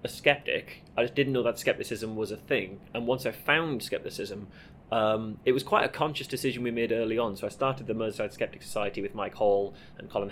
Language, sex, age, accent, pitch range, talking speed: Swedish, male, 20-39, British, 105-125 Hz, 225 wpm